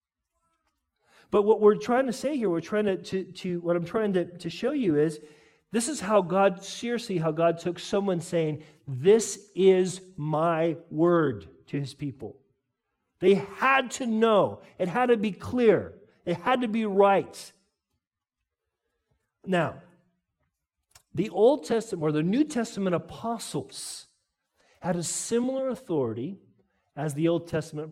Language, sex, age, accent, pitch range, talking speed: English, male, 50-69, American, 140-200 Hz, 145 wpm